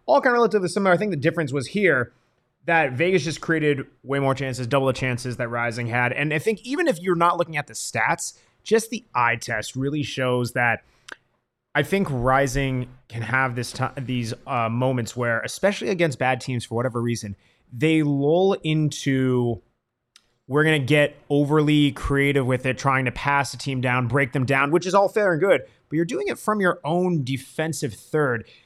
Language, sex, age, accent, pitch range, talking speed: English, male, 30-49, American, 130-180 Hz, 200 wpm